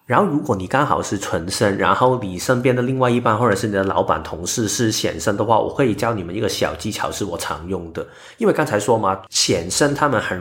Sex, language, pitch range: male, Chinese, 100-130 Hz